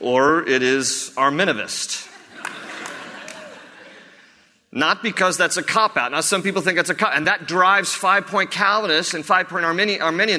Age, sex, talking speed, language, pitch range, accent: 40-59, male, 145 wpm, English, 170-210 Hz, American